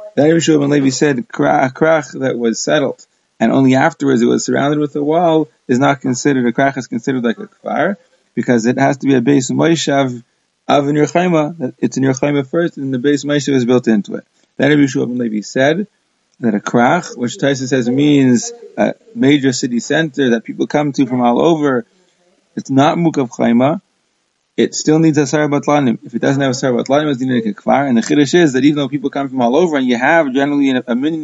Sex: male